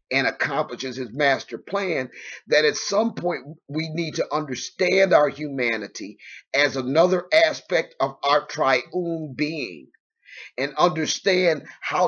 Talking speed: 125 wpm